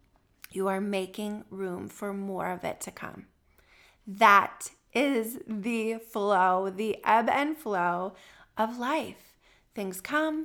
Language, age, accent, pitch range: English, 30-49, American, 195-255 Hz